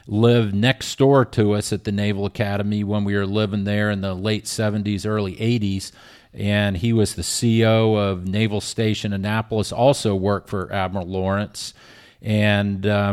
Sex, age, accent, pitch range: male, 40-59, American, 100-115 Hz